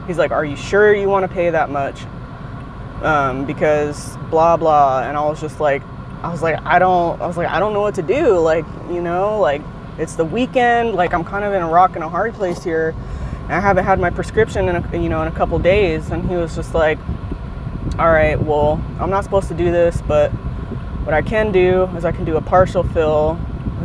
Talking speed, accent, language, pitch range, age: 235 wpm, American, English, 140-170 Hz, 20-39